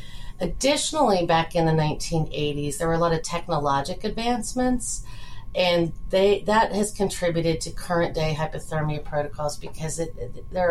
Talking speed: 140 wpm